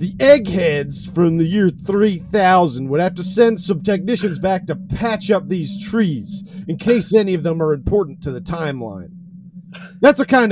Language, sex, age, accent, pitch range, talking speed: English, male, 40-59, American, 175-225 Hz, 175 wpm